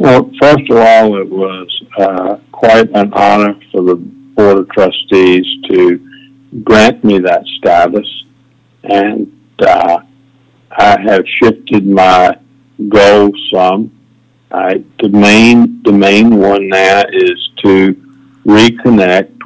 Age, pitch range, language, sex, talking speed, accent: 50-69, 100-130 Hz, English, male, 110 wpm, American